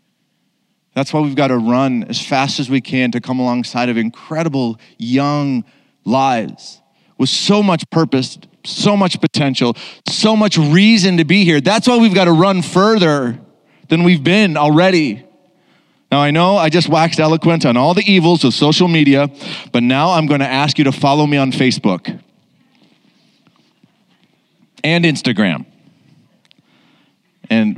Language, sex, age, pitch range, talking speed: English, male, 30-49, 125-165 Hz, 155 wpm